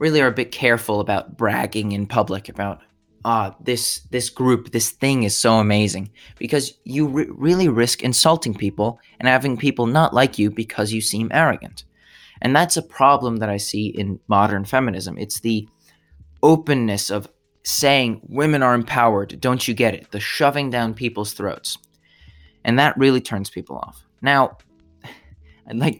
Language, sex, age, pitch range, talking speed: English, male, 20-39, 100-120 Hz, 165 wpm